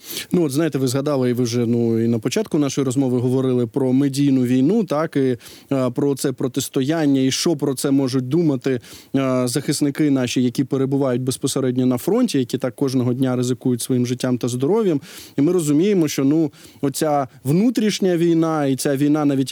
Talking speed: 180 wpm